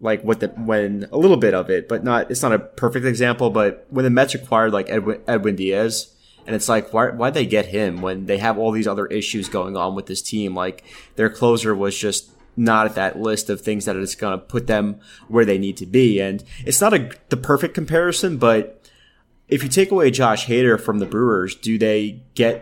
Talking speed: 230 wpm